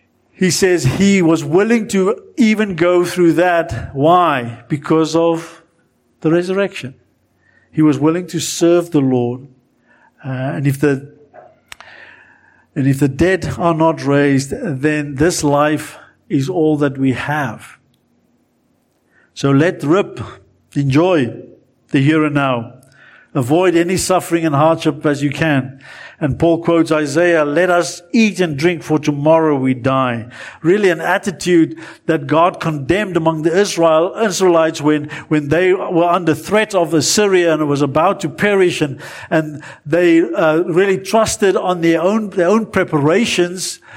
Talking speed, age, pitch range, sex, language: 140 wpm, 50-69, 150-185 Hz, male, English